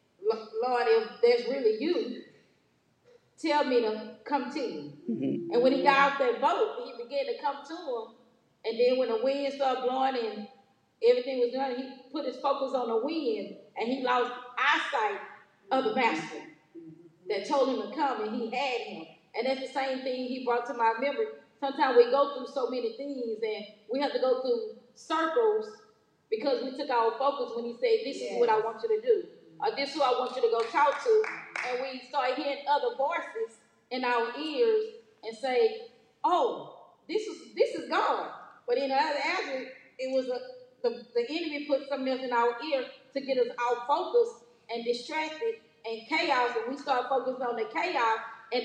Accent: American